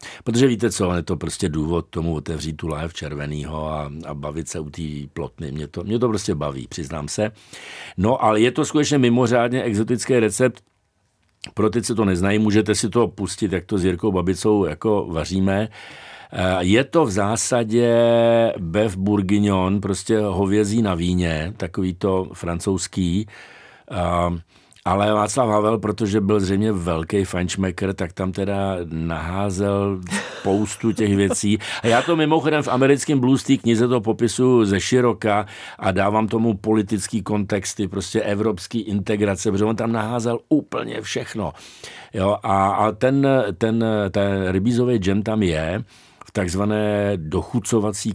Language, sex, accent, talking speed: Czech, male, native, 145 wpm